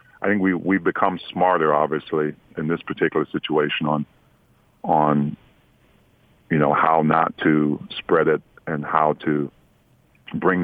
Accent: American